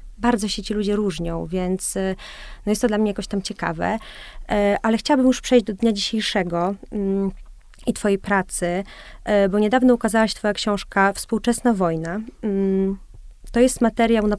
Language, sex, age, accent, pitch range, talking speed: Polish, female, 20-39, native, 185-225 Hz, 145 wpm